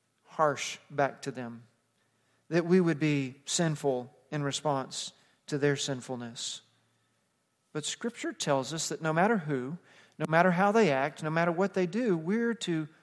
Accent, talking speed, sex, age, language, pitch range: American, 155 wpm, male, 40-59, English, 160-220 Hz